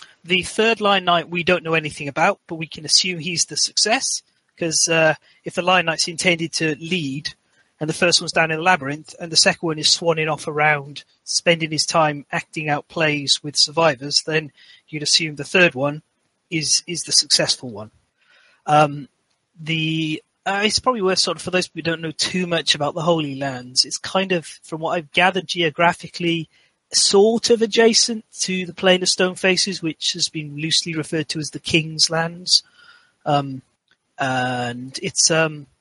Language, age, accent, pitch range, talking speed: English, 30-49, British, 145-175 Hz, 185 wpm